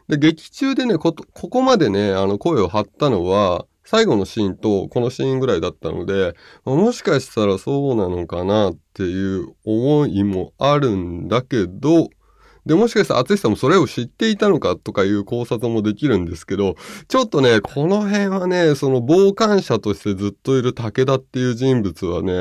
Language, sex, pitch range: Japanese, male, 100-165 Hz